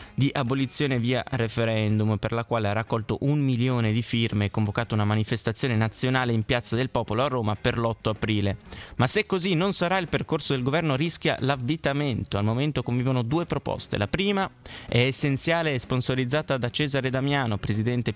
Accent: native